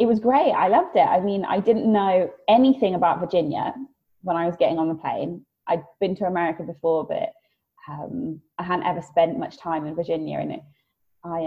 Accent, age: British, 20-39